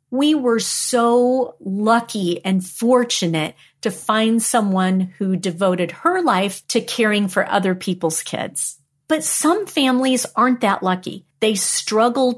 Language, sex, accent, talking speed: English, female, American, 130 wpm